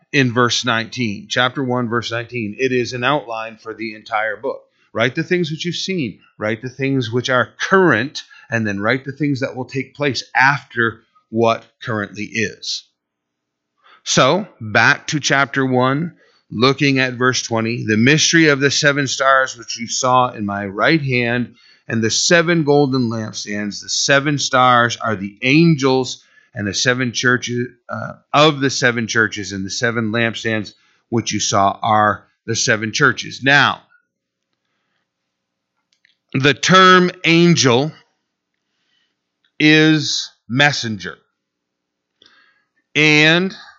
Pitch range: 110-140 Hz